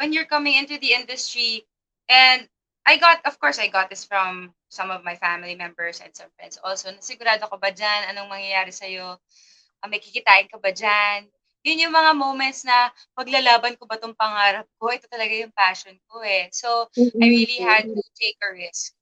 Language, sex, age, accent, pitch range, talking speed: English, female, 20-39, Filipino, 190-240 Hz, 160 wpm